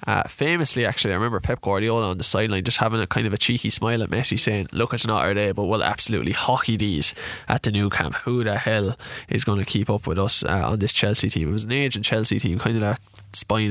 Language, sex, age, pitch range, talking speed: English, male, 20-39, 105-130 Hz, 265 wpm